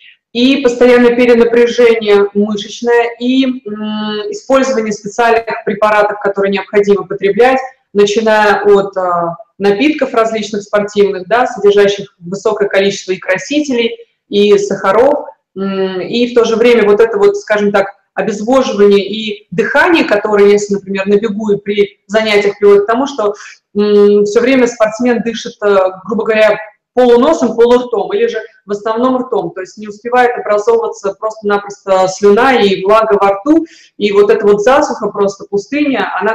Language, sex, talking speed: Russian, female, 140 wpm